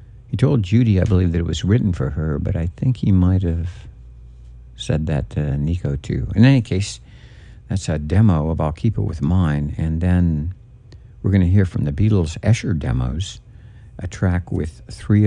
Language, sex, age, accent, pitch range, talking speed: English, male, 60-79, American, 80-110 Hz, 195 wpm